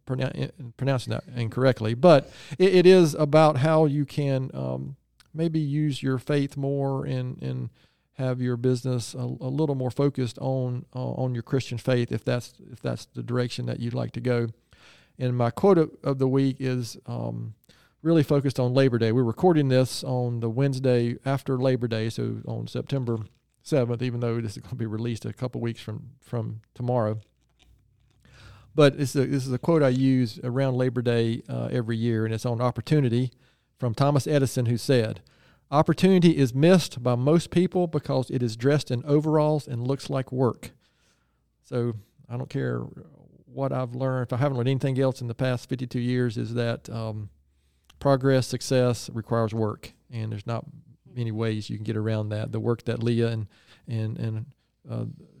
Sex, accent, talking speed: male, American, 180 wpm